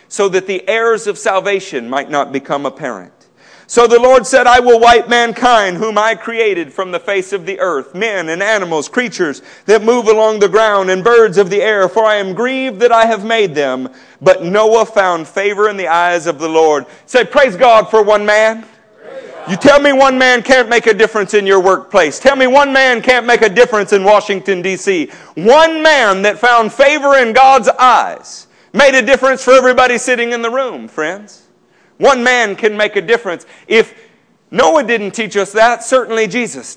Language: English